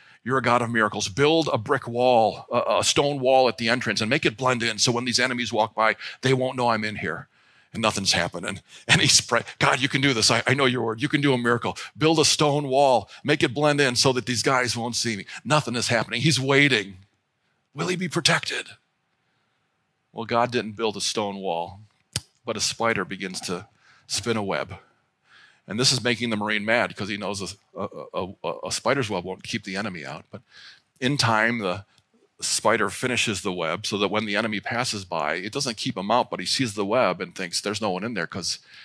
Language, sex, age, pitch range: English, male, 40-59, 105-135 Hz